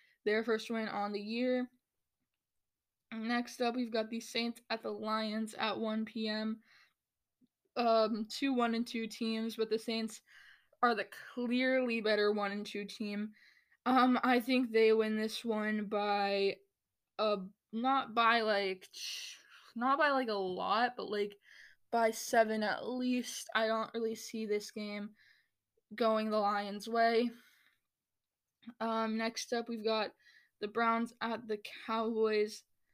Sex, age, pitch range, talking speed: female, 10-29, 215-235 Hz, 140 wpm